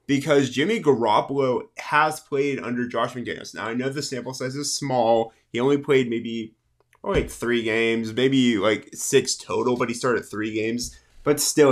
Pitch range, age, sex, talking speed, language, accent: 125-155 Hz, 20-39, male, 175 wpm, English, American